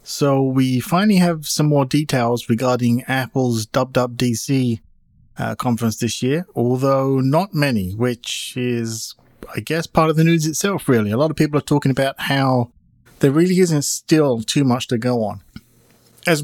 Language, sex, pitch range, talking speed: English, male, 120-145 Hz, 165 wpm